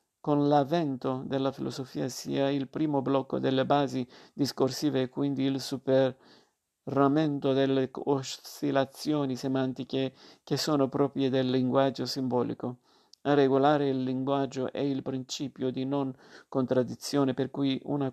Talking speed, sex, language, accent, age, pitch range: 125 wpm, male, Italian, native, 50-69, 130-140 Hz